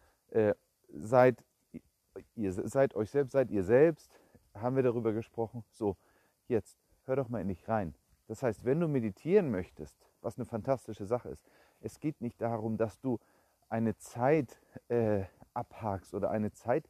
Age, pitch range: 40-59, 100-125 Hz